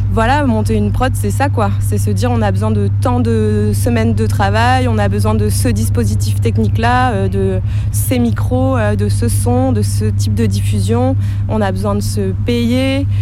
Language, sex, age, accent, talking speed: French, female, 20-39, French, 195 wpm